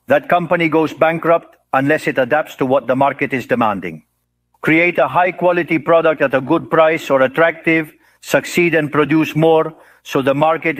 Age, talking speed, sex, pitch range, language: 50-69, 170 wpm, male, 135-160 Hz, English